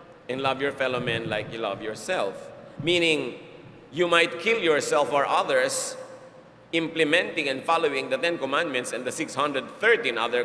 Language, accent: English, Filipino